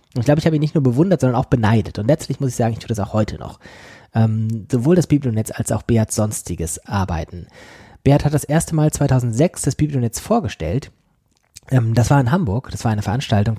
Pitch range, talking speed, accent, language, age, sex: 110-140 Hz, 220 wpm, German, German, 20-39, male